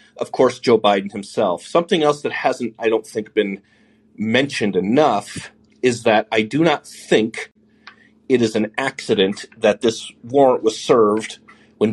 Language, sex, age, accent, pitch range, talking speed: English, male, 30-49, American, 100-115 Hz, 155 wpm